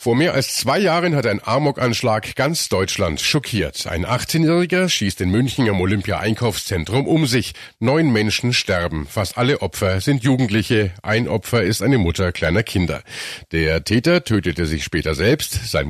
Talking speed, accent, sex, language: 160 wpm, German, male, German